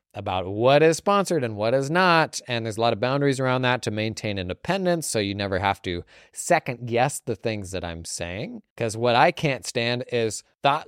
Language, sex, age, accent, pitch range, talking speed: English, male, 20-39, American, 110-150 Hz, 210 wpm